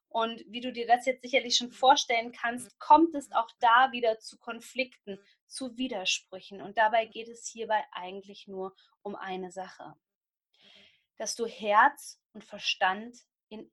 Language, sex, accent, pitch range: German, female, German, 220-260 Hz